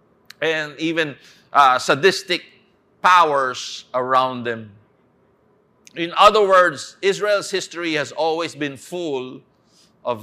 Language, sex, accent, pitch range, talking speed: English, male, Filipino, 145-195 Hz, 100 wpm